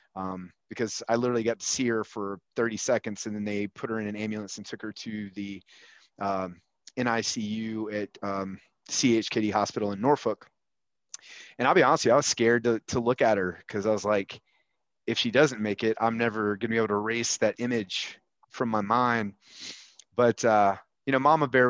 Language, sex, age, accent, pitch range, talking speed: English, male, 30-49, American, 105-120 Hz, 200 wpm